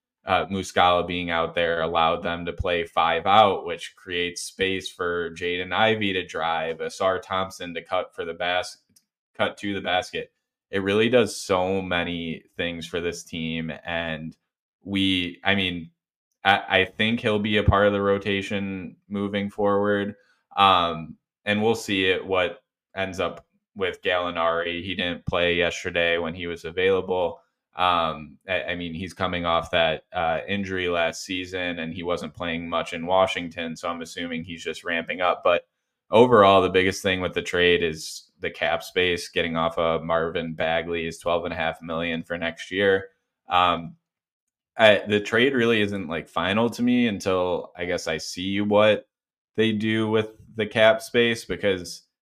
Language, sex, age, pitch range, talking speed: English, male, 20-39, 85-100 Hz, 170 wpm